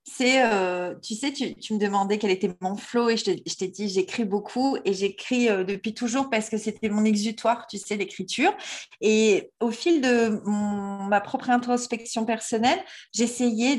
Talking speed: 185 wpm